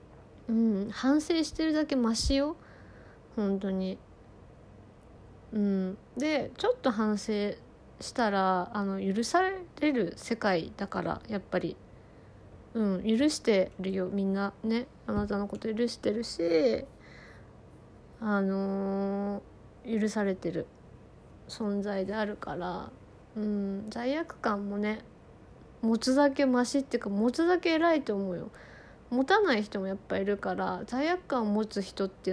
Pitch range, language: 195-260 Hz, Japanese